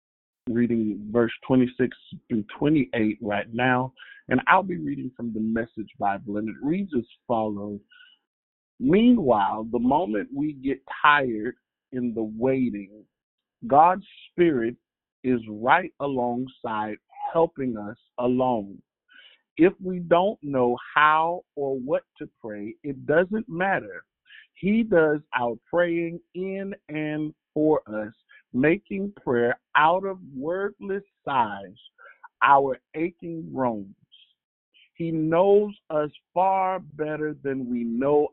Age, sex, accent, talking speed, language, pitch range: 50-69, male, American, 115 wpm, English, 120-190 Hz